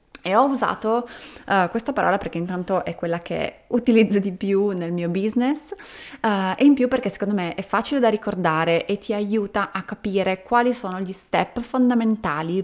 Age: 20-39